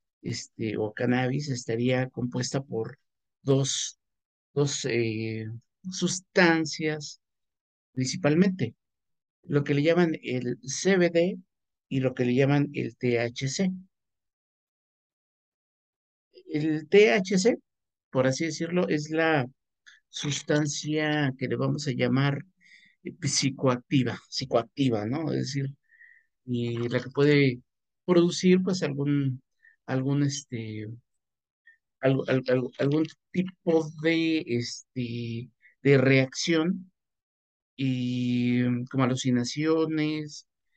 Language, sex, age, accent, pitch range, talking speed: Spanish, male, 50-69, Mexican, 125-165 Hz, 90 wpm